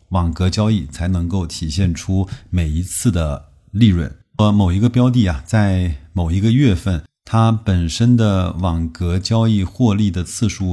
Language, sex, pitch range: Chinese, male, 85-110 Hz